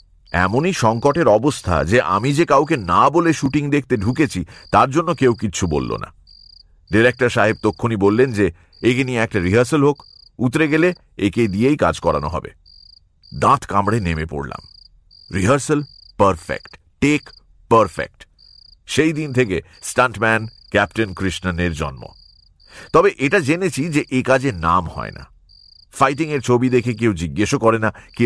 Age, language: 50-69, English